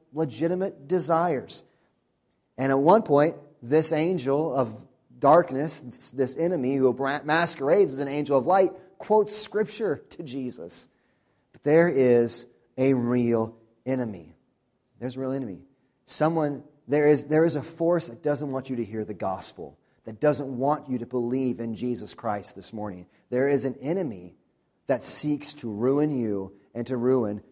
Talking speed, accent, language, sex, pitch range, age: 155 wpm, American, English, male, 130-165 Hz, 30-49